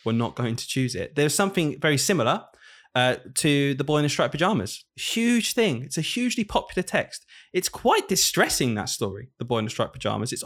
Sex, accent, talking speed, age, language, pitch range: male, British, 210 wpm, 20-39, English, 120-155 Hz